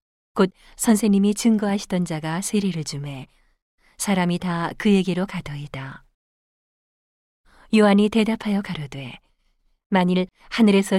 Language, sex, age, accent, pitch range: Korean, female, 40-59, native, 160-205 Hz